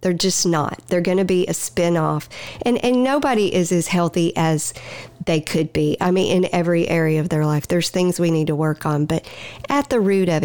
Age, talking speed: 50-69, 225 wpm